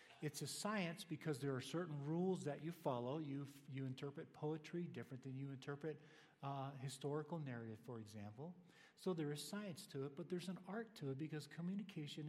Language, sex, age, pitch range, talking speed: English, male, 50-69, 135-170 Hz, 185 wpm